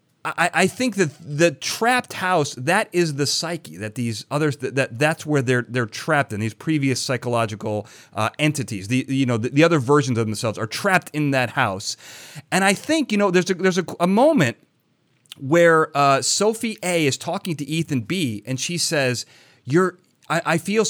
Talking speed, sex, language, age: 195 wpm, male, English, 30-49